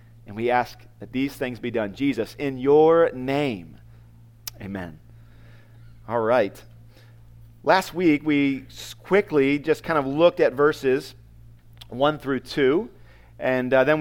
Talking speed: 135 wpm